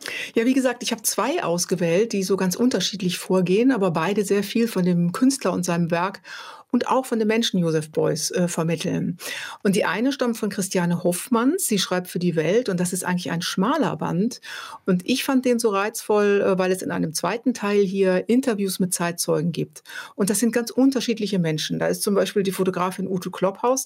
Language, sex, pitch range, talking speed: German, female, 175-225 Hz, 205 wpm